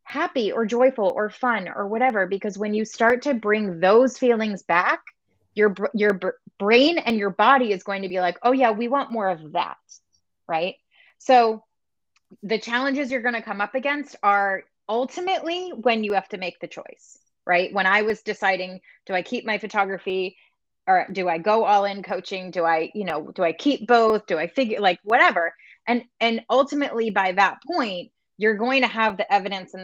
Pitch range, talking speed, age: 185-240 Hz, 195 wpm, 20-39